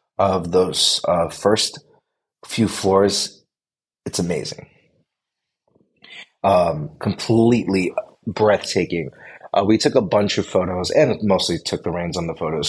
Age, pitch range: 30-49, 95-120 Hz